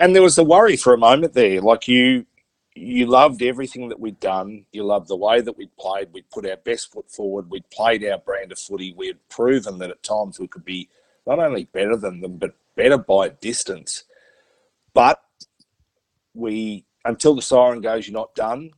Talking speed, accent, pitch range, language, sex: 205 wpm, Australian, 105-130 Hz, English, male